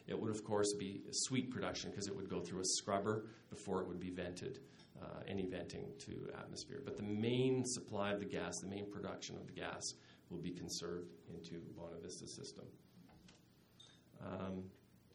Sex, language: male, English